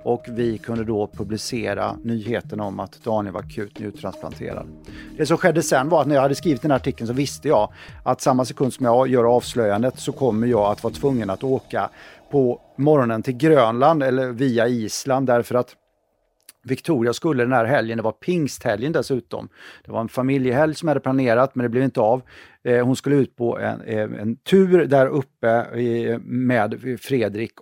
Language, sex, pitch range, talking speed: English, male, 110-135 Hz, 180 wpm